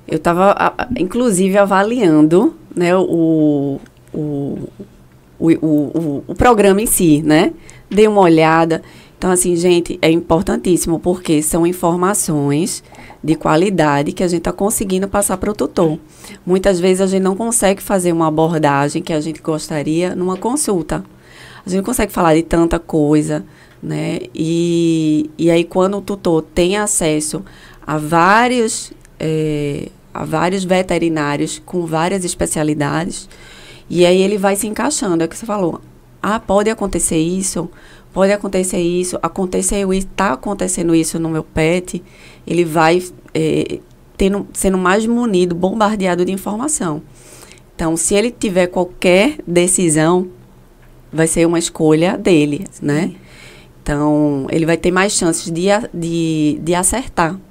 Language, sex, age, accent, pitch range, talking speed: Portuguese, female, 20-39, Brazilian, 160-195 Hz, 135 wpm